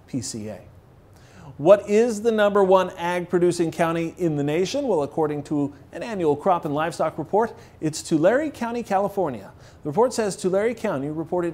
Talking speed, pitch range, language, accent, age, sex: 160 wpm, 130-175 Hz, English, American, 40-59, male